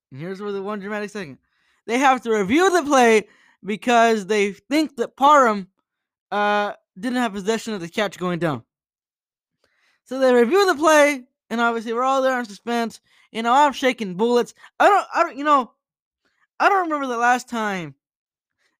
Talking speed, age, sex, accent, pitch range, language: 180 wpm, 10-29, male, American, 185-255 Hz, English